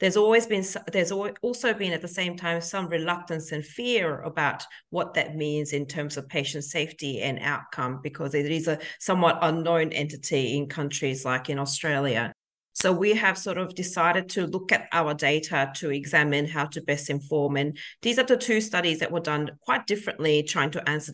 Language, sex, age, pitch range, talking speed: English, female, 40-59, 150-185 Hz, 195 wpm